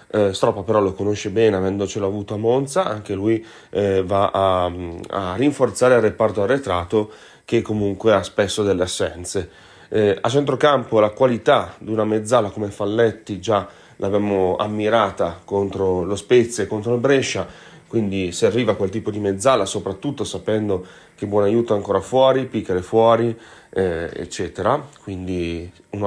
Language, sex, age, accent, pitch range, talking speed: Italian, male, 30-49, native, 100-120 Hz, 155 wpm